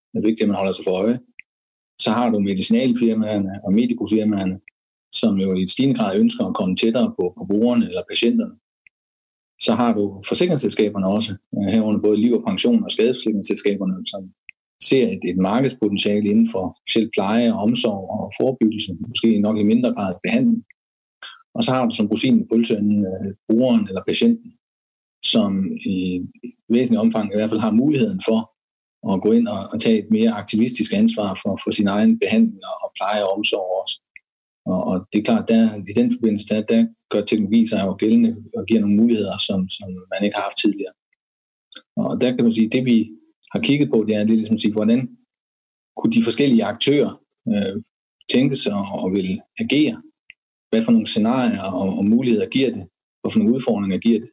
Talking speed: 185 wpm